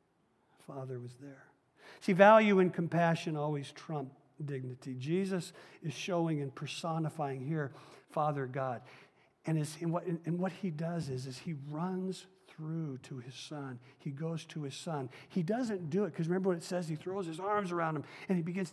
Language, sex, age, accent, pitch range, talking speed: English, male, 50-69, American, 140-190 Hz, 175 wpm